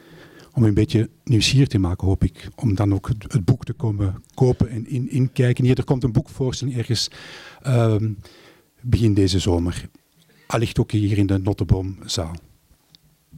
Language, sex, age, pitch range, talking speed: Dutch, male, 50-69, 110-135 Hz, 155 wpm